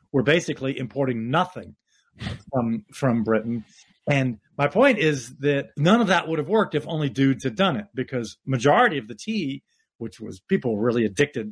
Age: 40-59